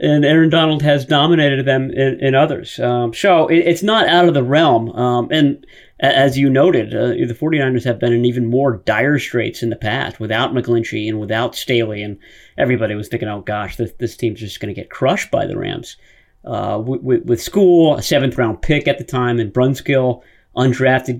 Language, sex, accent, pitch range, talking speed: English, male, American, 120-150 Hz, 205 wpm